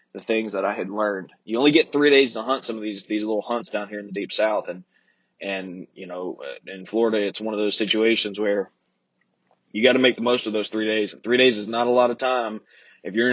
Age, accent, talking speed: 20-39, American, 255 wpm